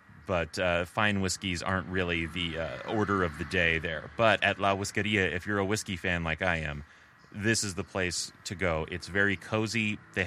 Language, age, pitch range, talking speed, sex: English, 30-49, 90-105 Hz, 205 wpm, male